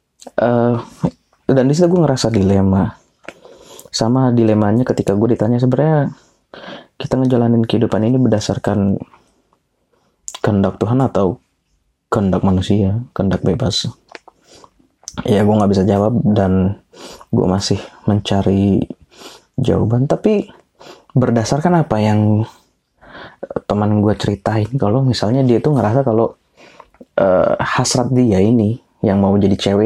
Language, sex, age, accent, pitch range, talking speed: Indonesian, male, 20-39, native, 100-125 Hz, 110 wpm